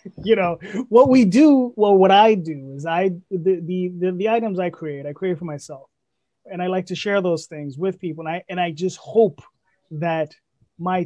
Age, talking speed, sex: 20-39, 210 wpm, male